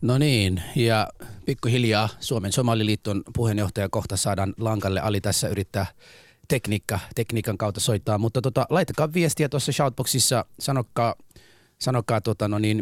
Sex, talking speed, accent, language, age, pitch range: male, 120 wpm, native, Finnish, 30-49, 105-125 Hz